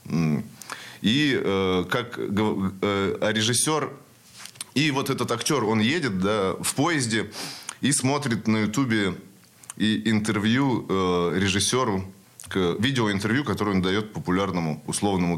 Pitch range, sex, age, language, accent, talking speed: 95-115 Hz, male, 20-39, Russian, native, 100 wpm